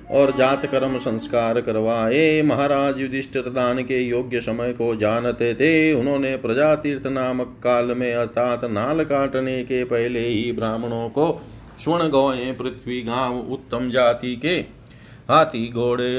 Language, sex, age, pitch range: Hindi, male, 40-59, 120-150 Hz